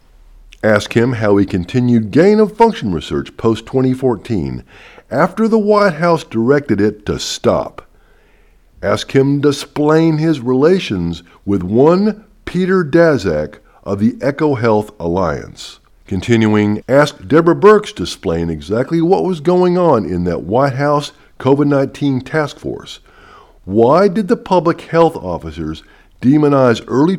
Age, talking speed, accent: 50-69, 130 wpm, American